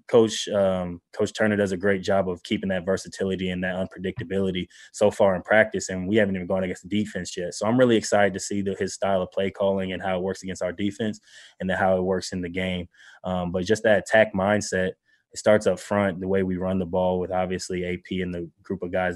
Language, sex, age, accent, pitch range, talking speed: English, male, 20-39, American, 90-95 Hz, 245 wpm